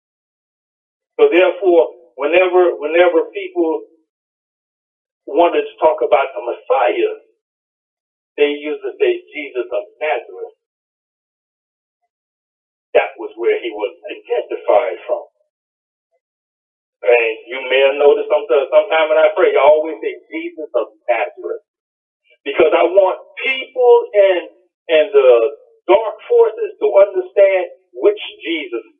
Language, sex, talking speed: English, male, 110 wpm